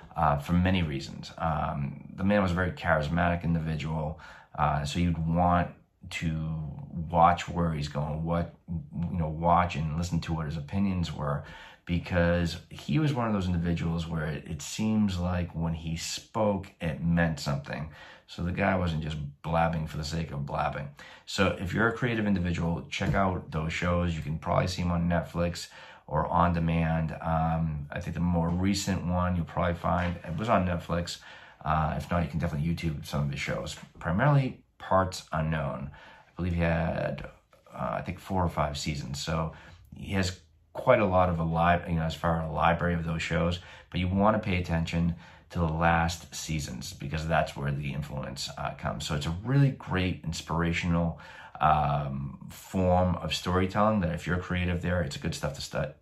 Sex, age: male, 30-49